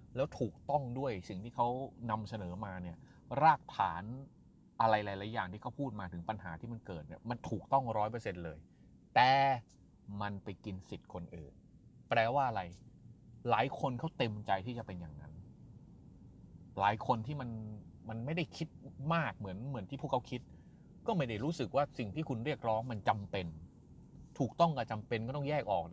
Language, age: Thai, 30-49